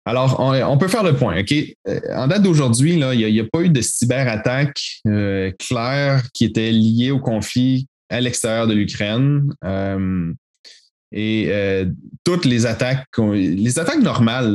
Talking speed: 165 wpm